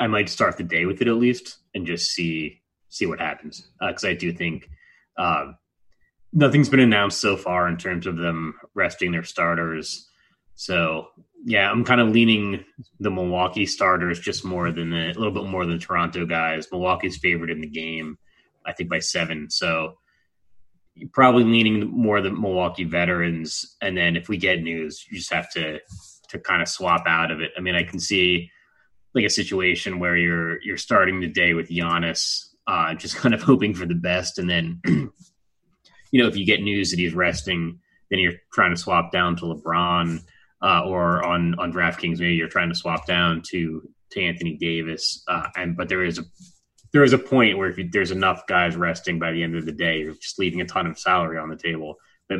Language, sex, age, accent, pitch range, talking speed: English, male, 30-49, American, 85-100 Hz, 205 wpm